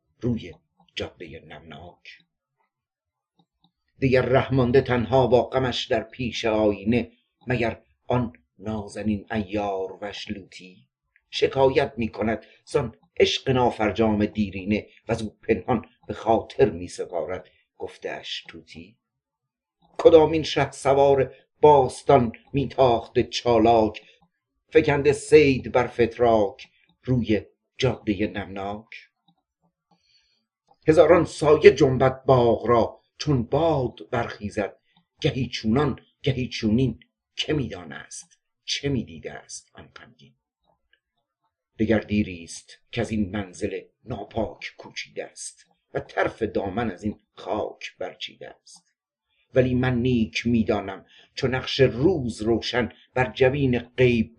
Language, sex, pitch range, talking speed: Persian, male, 105-135 Hz, 105 wpm